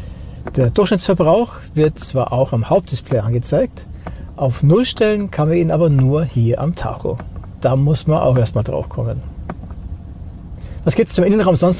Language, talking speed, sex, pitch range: German, 160 wpm, male, 120-165 Hz